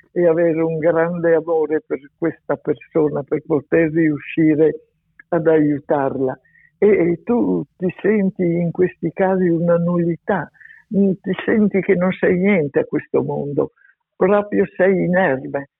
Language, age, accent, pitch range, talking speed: Italian, 60-79, native, 150-185 Hz, 135 wpm